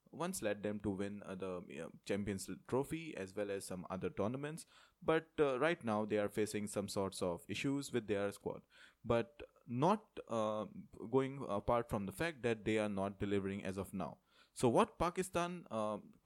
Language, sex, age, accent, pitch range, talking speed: English, male, 20-39, Indian, 100-145 Hz, 185 wpm